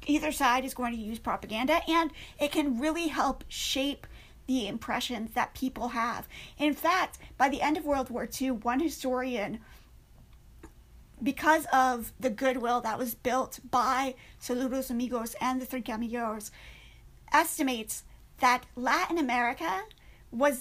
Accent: American